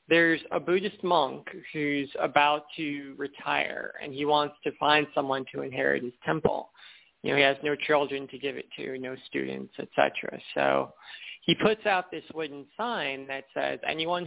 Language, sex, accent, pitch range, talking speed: English, male, American, 140-165 Hz, 175 wpm